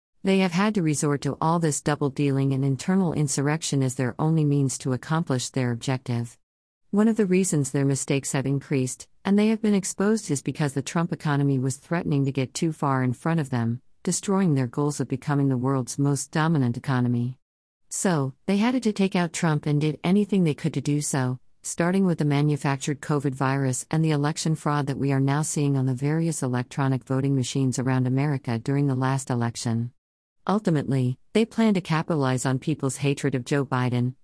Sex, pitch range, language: female, 130-165 Hz, English